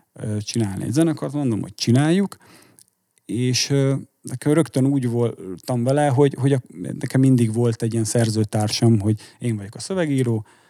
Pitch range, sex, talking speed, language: 115-135 Hz, male, 140 wpm, Hungarian